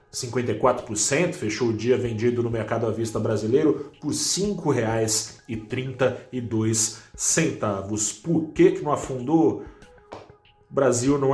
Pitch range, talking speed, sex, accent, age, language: 110-140 Hz, 100 wpm, male, Brazilian, 30-49, Portuguese